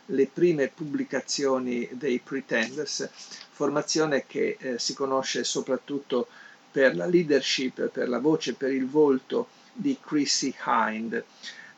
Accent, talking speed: native, 120 wpm